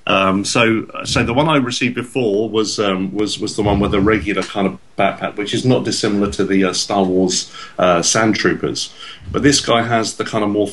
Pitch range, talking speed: 95-115 Hz, 225 wpm